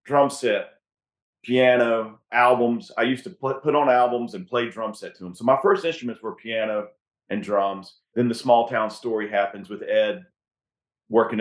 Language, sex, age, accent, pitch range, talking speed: English, male, 40-59, American, 100-120 Hz, 180 wpm